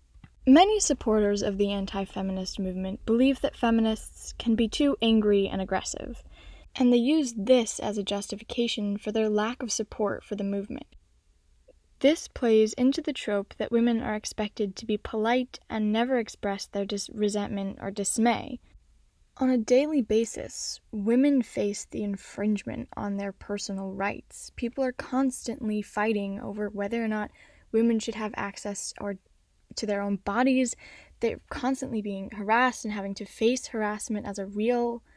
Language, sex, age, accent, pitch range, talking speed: English, female, 10-29, American, 205-245 Hz, 155 wpm